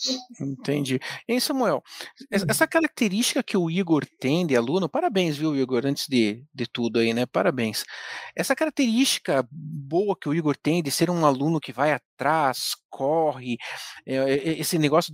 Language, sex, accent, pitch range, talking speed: Portuguese, male, Brazilian, 150-220 Hz, 160 wpm